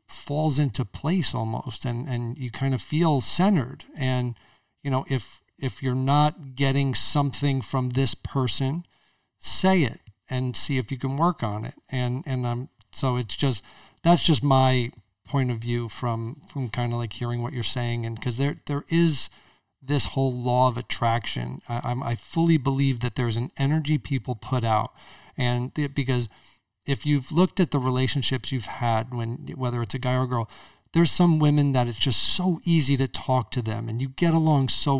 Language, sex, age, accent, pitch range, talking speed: English, male, 40-59, American, 120-140 Hz, 190 wpm